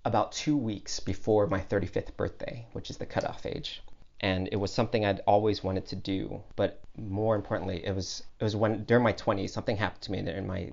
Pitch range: 95-110 Hz